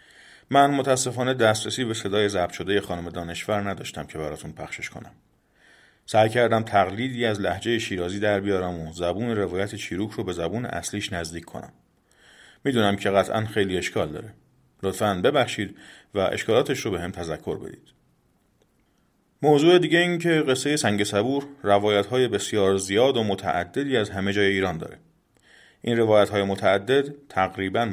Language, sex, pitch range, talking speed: Persian, male, 90-115 Hz, 150 wpm